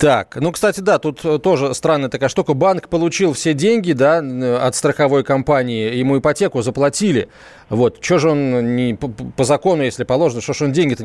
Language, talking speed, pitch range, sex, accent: Russian, 175 wpm, 140-185 Hz, male, native